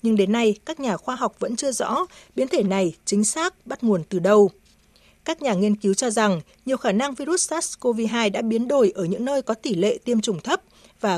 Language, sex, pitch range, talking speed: Vietnamese, female, 200-260 Hz, 230 wpm